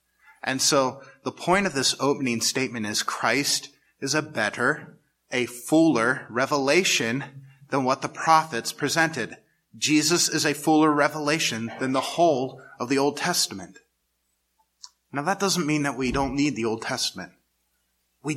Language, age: English, 30-49